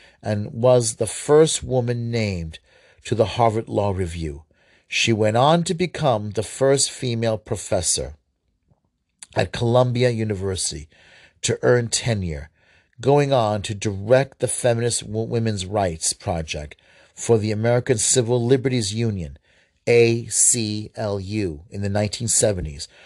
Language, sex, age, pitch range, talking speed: English, male, 40-59, 100-130 Hz, 115 wpm